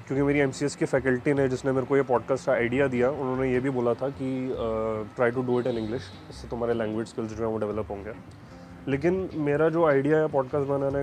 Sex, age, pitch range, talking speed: male, 20-39, 120-145 Hz, 230 wpm